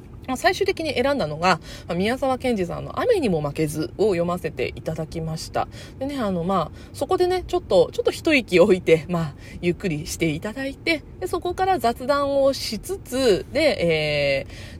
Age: 20-39